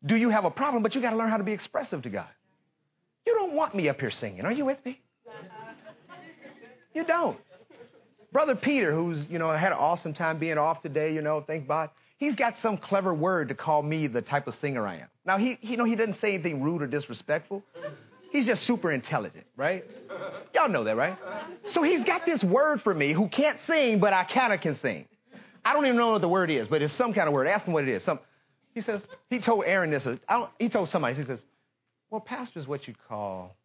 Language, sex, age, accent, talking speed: English, male, 30-49, American, 235 wpm